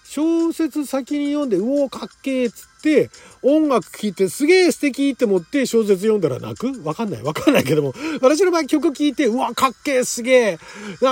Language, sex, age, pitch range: Japanese, male, 40-59, 170-260 Hz